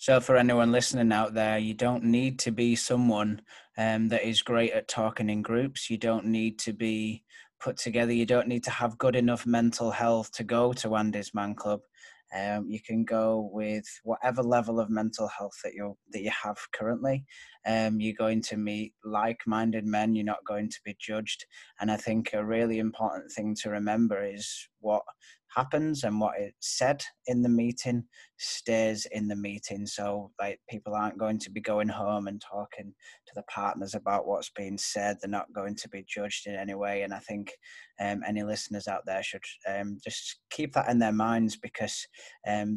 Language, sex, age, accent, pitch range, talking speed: English, male, 20-39, British, 105-115 Hz, 195 wpm